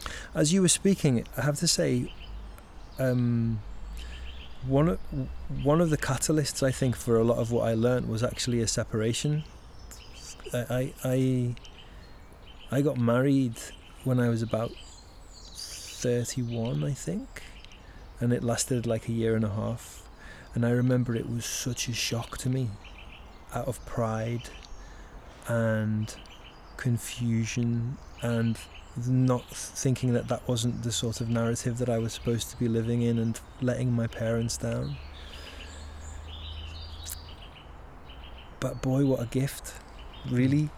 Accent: British